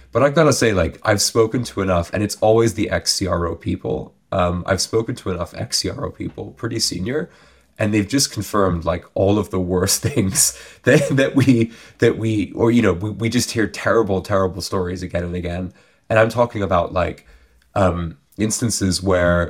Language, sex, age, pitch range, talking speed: English, male, 20-39, 90-110 Hz, 185 wpm